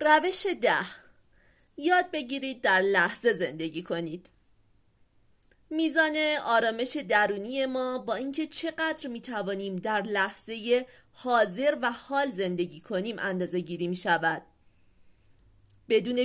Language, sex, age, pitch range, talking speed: Persian, female, 30-49, 175-270 Hz, 105 wpm